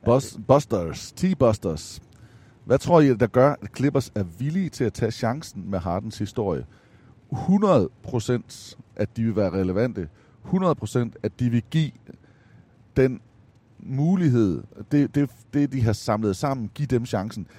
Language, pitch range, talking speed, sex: Danish, 105-135 Hz, 155 wpm, male